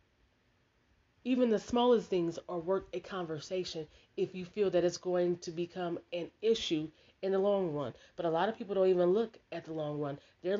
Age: 30-49